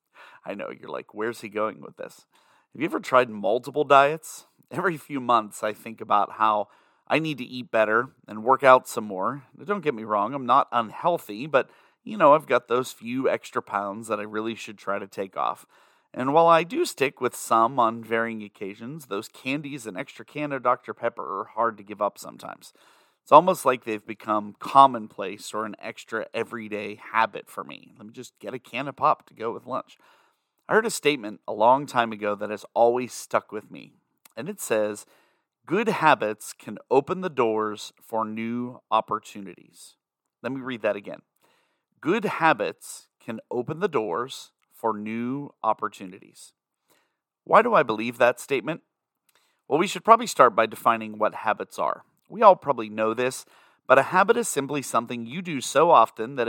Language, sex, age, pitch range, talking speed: English, male, 30-49, 110-145 Hz, 190 wpm